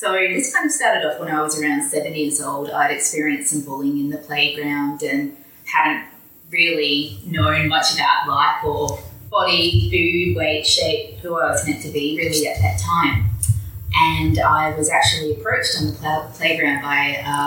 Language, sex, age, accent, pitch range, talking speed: English, female, 30-49, Australian, 115-155 Hz, 180 wpm